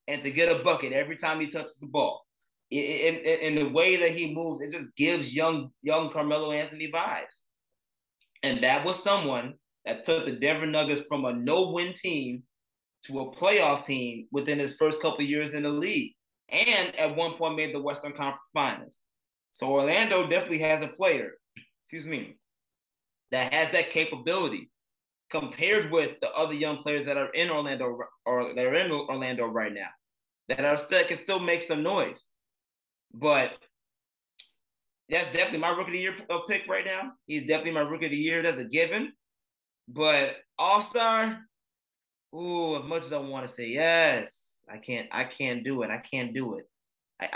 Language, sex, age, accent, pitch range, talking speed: English, male, 20-39, American, 140-170 Hz, 180 wpm